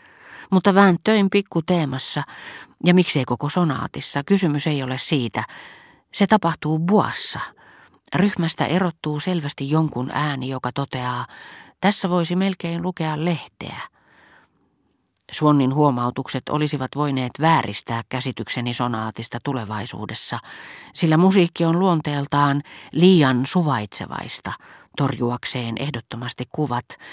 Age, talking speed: 40-59, 95 wpm